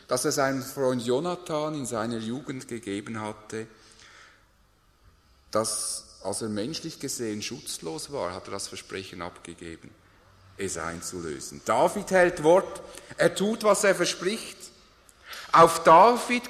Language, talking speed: English, 125 wpm